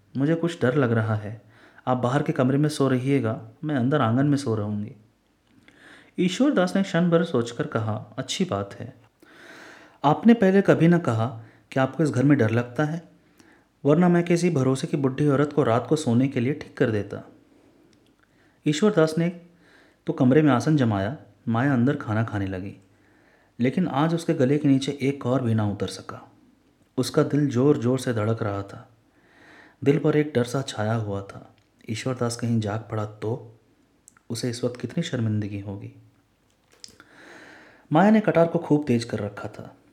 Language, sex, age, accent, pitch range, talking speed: Hindi, male, 30-49, native, 110-145 Hz, 175 wpm